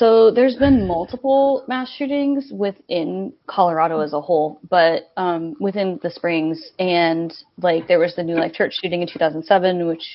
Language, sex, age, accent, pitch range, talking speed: English, female, 20-39, American, 165-200 Hz, 165 wpm